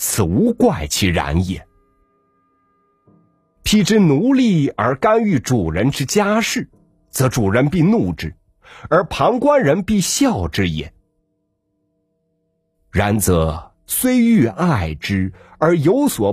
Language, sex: Chinese, male